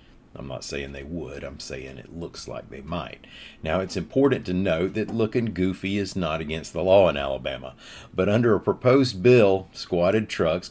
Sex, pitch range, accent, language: male, 75-100 Hz, American, English